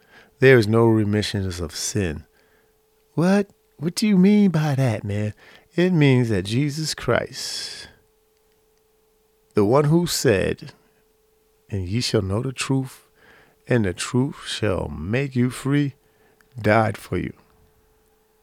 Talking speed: 125 wpm